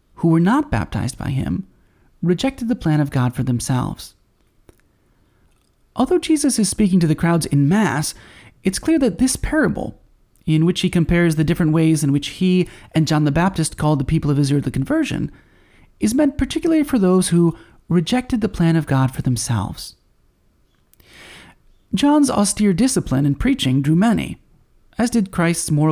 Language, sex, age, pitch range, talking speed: English, male, 30-49, 140-220 Hz, 165 wpm